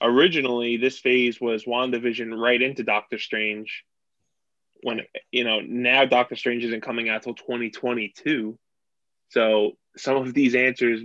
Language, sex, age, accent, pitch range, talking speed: English, male, 20-39, American, 110-125 Hz, 135 wpm